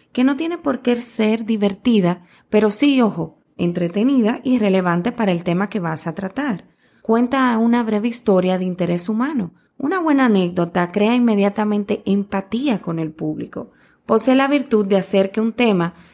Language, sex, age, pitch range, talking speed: Spanish, female, 20-39, 190-250 Hz, 165 wpm